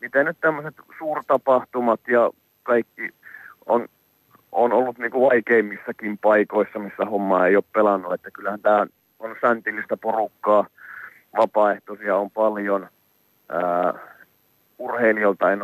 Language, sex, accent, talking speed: Finnish, male, native, 105 wpm